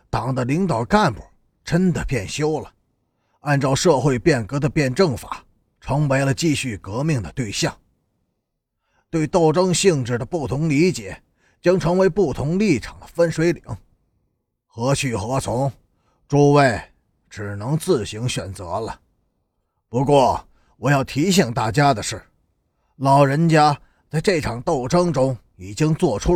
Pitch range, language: 110-170 Hz, Chinese